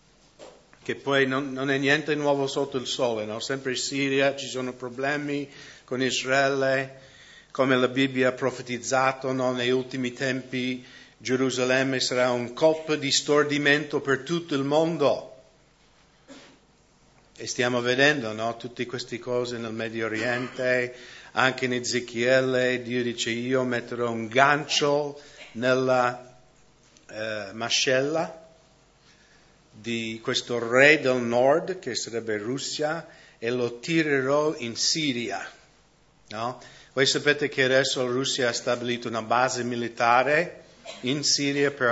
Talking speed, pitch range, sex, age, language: 125 wpm, 125-145 Hz, male, 50-69, English